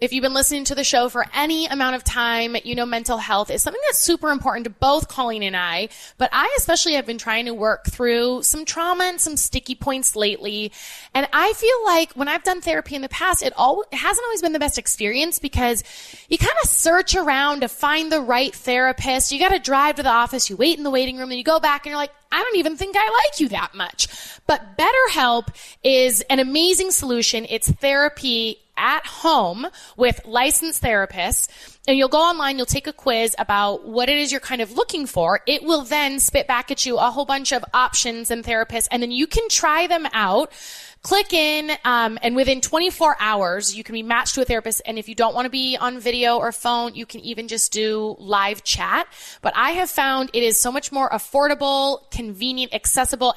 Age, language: 20-39, English